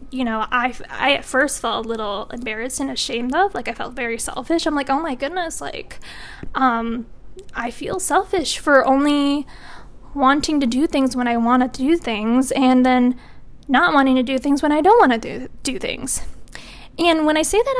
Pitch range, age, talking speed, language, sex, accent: 245-300 Hz, 10-29, 200 wpm, English, female, American